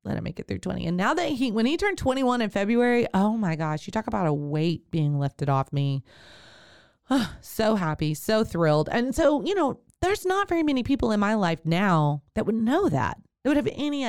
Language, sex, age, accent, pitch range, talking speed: English, female, 30-49, American, 160-235 Hz, 225 wpm